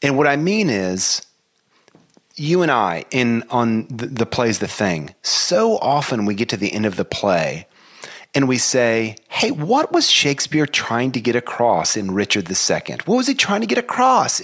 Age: 30-49